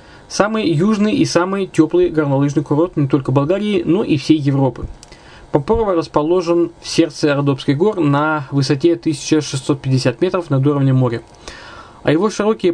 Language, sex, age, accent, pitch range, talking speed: Russian, male, 20-39, native, 140-170 Hz, 140 wpm